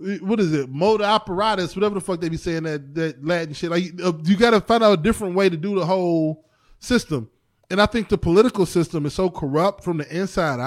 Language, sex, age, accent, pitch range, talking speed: English, male, 20-39, American, 135-215 Hz, 230 wpm